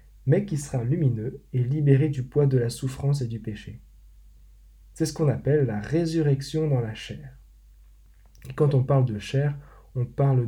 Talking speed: 180 wpm